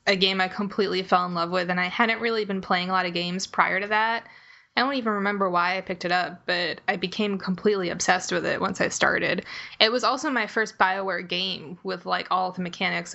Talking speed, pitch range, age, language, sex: 235 wpm, 185-215 Hz, 20-39, English, female